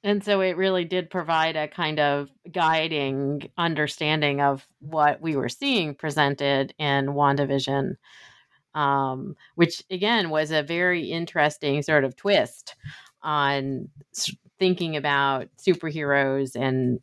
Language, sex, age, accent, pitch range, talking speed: English, female, 30-49, American, 140-180 Hz, 120 wpm